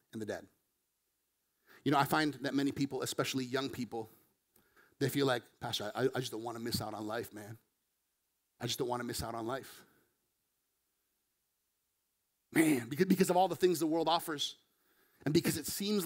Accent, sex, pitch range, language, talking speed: American, male, 125-150 Hz, English, 185 wpm